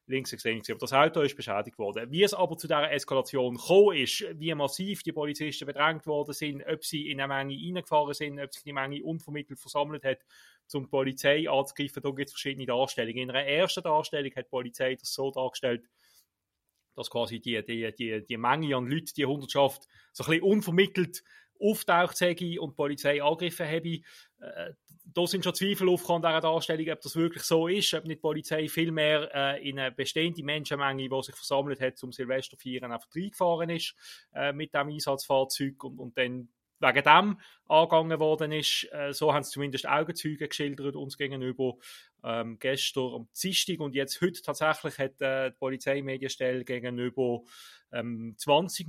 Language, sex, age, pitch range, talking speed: German, male, 30-49, 135-160 Hz, 175 wpm